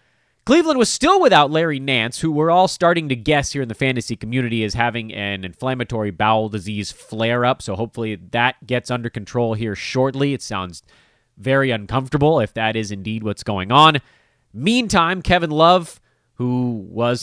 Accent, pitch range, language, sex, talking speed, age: American, 110-160 Hz, English, male, 170 wpm, 30-49